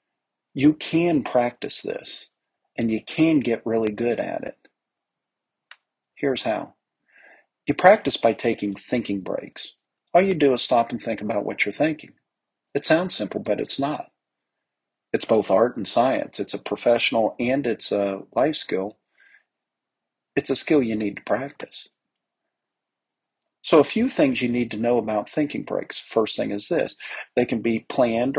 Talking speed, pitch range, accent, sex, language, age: 160 wpm, 105-140 Hz, American, male, English, 50-69